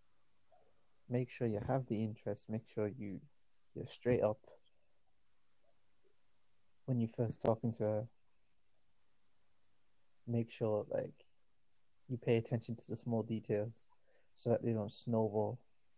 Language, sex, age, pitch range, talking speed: English, male, 20-39, 100-120 Hz, 125 wpm